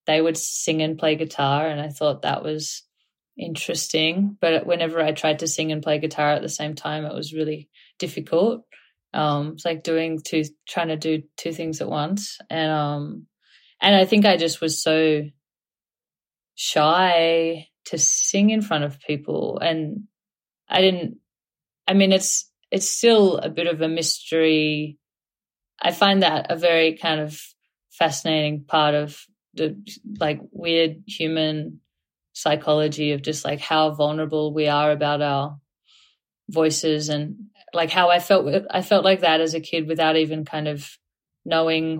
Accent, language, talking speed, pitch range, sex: Australian, English, 160 wpm, 150-170 Hz, female